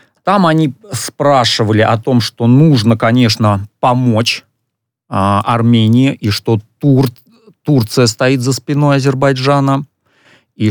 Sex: male